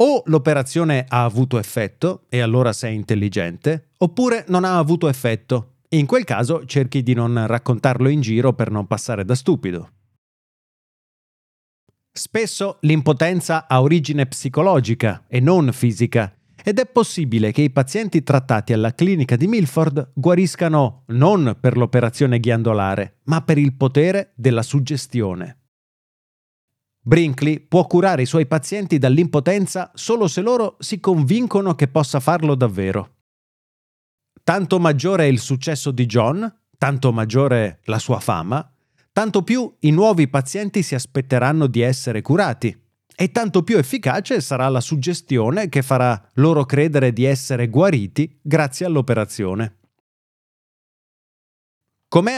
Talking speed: 130 wpm